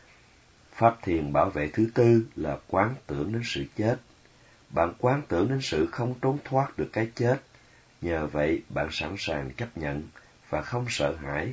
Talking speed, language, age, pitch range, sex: 175 wpm, Vietnamese, 30-49, 80-115 Hz, male